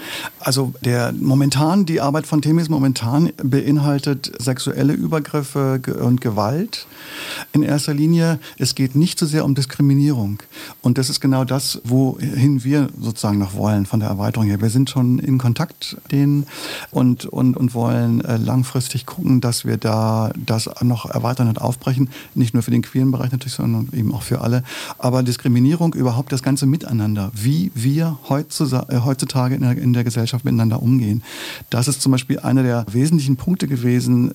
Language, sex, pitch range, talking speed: German, male, 125-145 Hz, 165 wpm